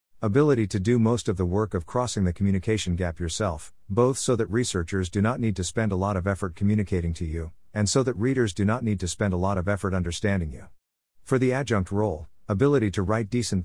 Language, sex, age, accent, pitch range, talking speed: English, male, 50-69, American, 90-115 Hz, 230 wpm